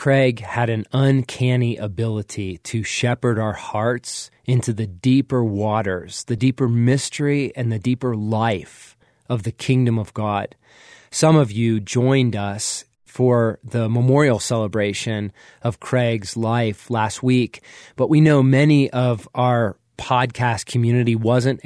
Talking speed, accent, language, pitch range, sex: 135 wpm, American, English, 115-130 Hz, male